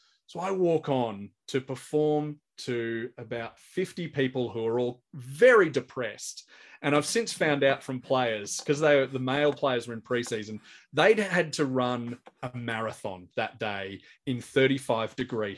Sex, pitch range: male, 120-145 Hz